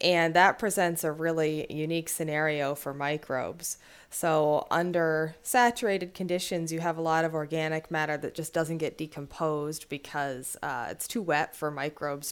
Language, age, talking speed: English, 20-39, 155 wpm